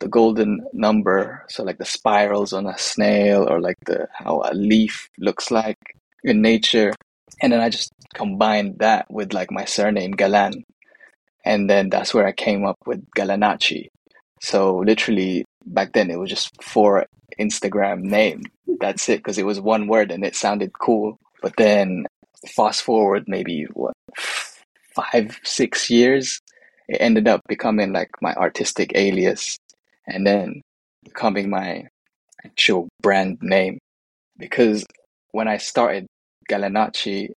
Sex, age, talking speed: male, 20-39, 145 wpm